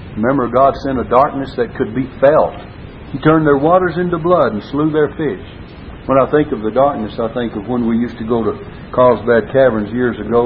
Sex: male